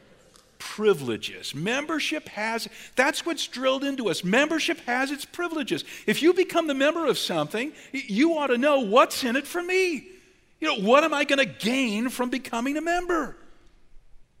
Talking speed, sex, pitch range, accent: 165 wpm, male, 150-240 Hz, American